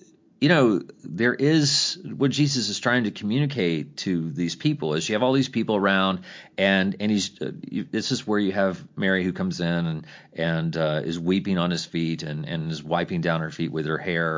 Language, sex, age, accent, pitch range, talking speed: English, male, 40-59, American, 80-120 Hz, 215 wpm